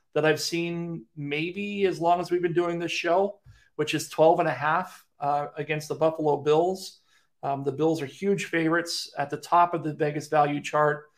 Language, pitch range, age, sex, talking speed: English, 140-160 Hz, 40-59, male, 200 wpm